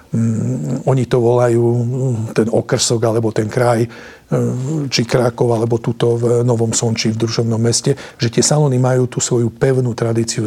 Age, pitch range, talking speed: 50-69, 115-130 Hz, 150 wpm